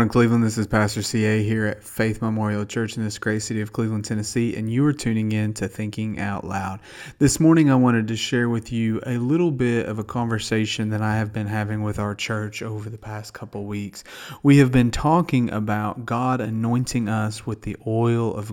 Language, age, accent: English, 30-49, American